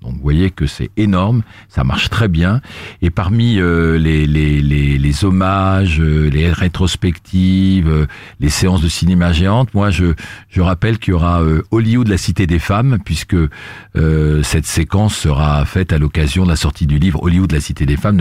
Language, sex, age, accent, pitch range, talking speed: French, male, 50-69, French, 80-100 Hz, 185 wpm